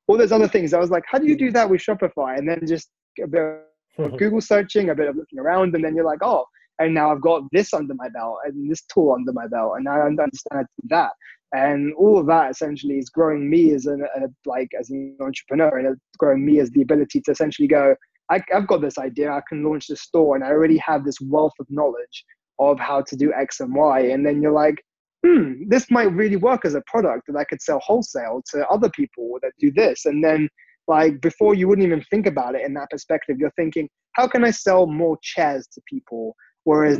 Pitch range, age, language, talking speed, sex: 140-180 Hz, 20-39, English, 240 wpm, male